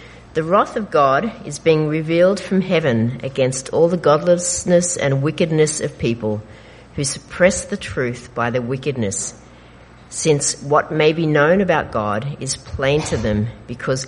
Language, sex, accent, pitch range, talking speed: English, female, Australian, 115-170 Hz, 155 wpm